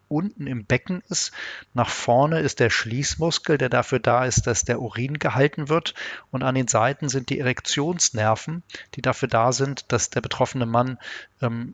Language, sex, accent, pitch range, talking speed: German, male, German, 120-140 Hz, 175 wpm